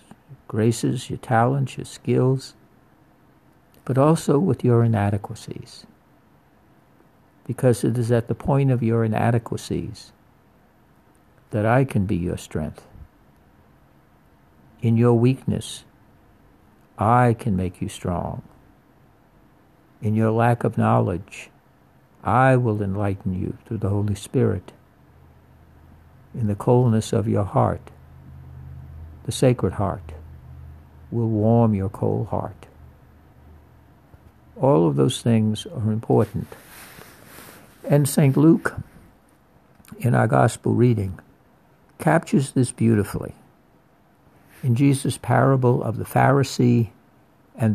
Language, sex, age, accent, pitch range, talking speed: English, male, 60-79, American, 100-125 Hz, 105 wpm